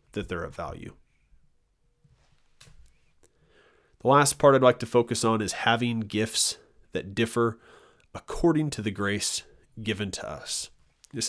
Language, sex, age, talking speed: English, male, 30-49, 135 wpm